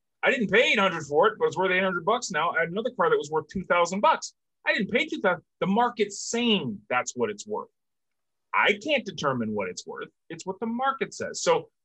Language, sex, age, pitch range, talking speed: English, male, 30-49, 155-235 Hz, 245 wpm